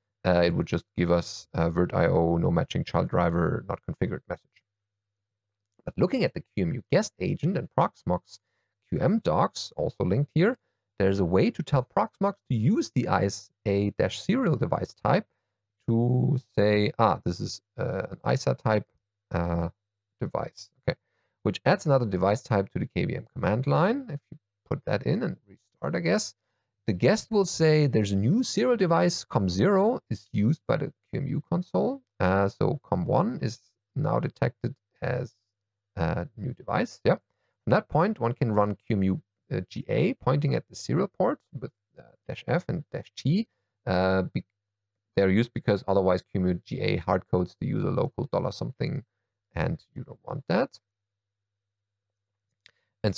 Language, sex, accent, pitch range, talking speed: English, male, German, 100-140 Hz, 155 wpm